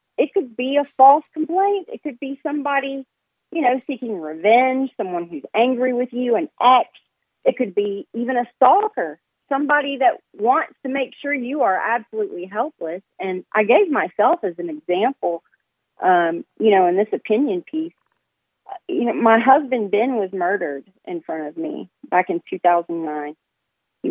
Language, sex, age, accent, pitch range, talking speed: English, female, 40-59, American, 175-260 Hz, 165 wpm